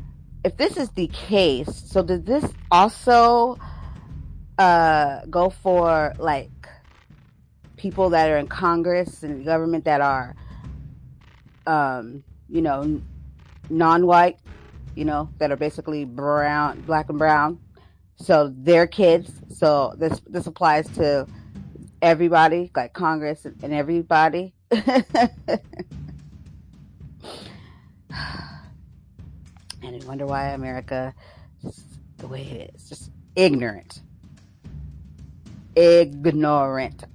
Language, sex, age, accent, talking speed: English, female, 30-49, American, 100 wpm